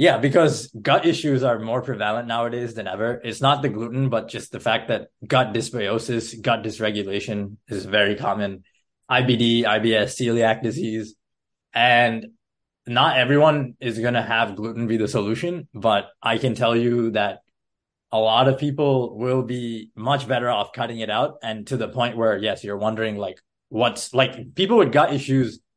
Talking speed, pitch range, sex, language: 170 wpm, 110-130 Hz, male, English